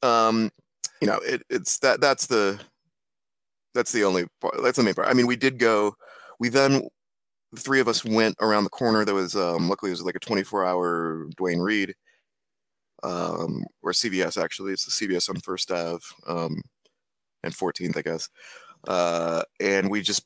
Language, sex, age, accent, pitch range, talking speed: English, male, 30-49, American, 95-125 Hz, 180 wpm